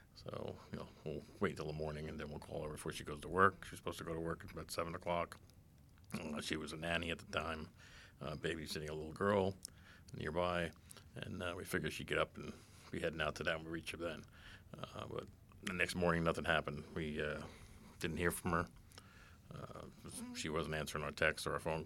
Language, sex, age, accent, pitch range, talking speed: English, male, 50-69, American, 80-95 Hz, 230 wpm